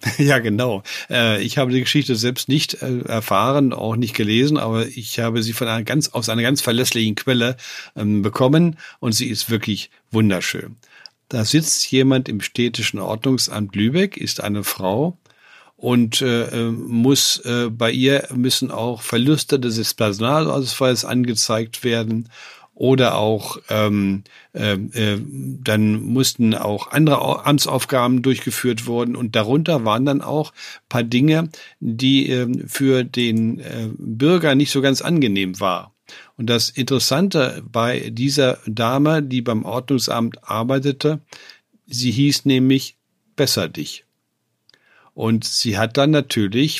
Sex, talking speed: male, 130 wpm